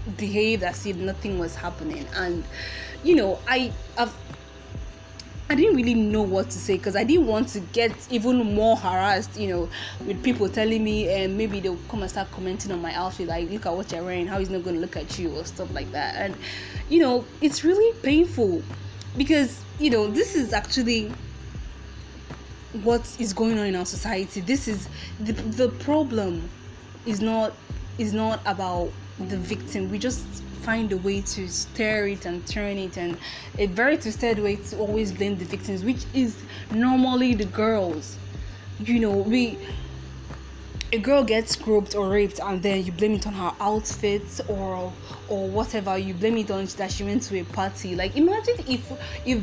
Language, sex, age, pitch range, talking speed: English, female, 20-39, 170-225 Hz, 185 wpm